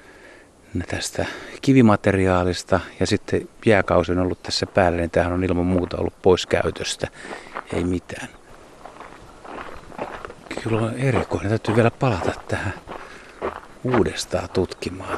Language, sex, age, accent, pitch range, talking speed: Finnish, male, 60-79, native, 90-120 Hz, 110 wpm